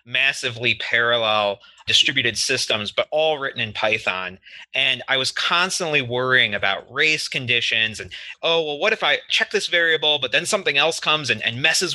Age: 30-49